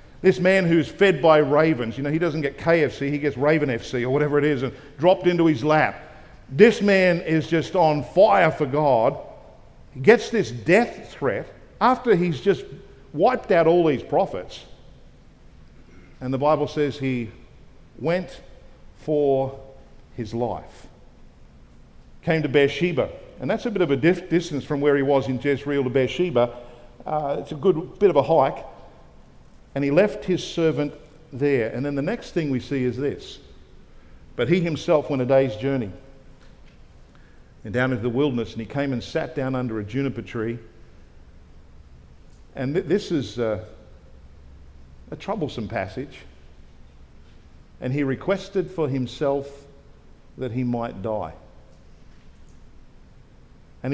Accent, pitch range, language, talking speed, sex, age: Australian, 115-155 Hz, English, 150 wpm, male, 50-69